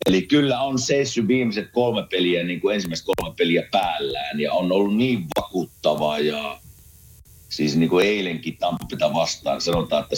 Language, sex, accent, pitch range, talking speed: Finnish, male, native, 90-135 Hz, 155 wpm